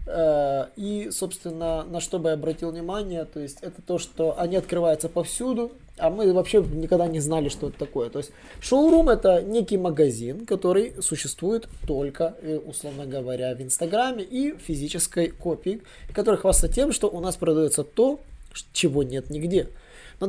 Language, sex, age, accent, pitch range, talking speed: Russian, male, 20-39, native, 150-210 Hz, 155 wpm